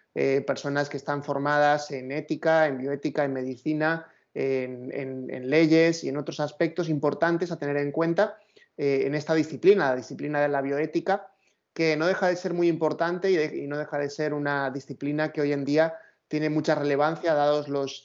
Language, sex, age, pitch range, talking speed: Spanish, male, 30-49, 140-160 Hz, 185 wpm